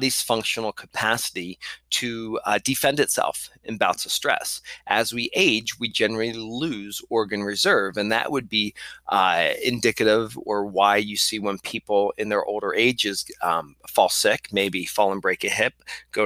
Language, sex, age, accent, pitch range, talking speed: English, male, 30-49, American, 100-120 Hz, 160 wpm